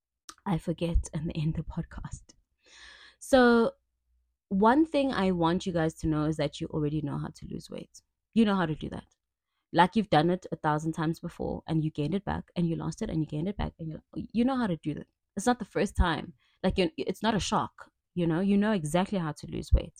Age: 20-39